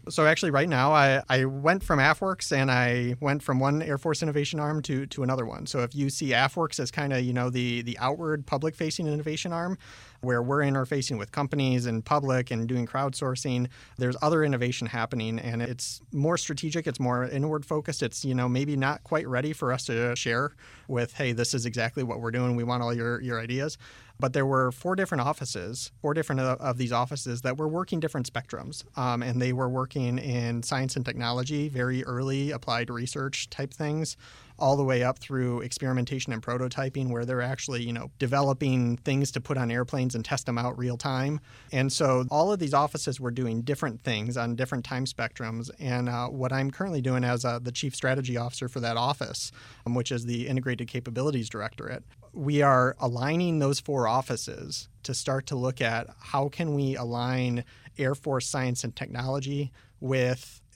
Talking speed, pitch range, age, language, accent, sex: 195 wpm, 120-140 Hz, 30-49, English, American, male